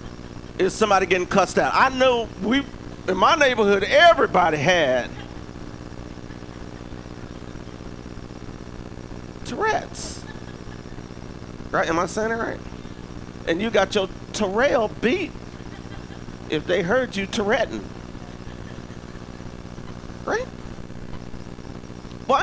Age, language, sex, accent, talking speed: 40-59, English, male, American, 90 wpm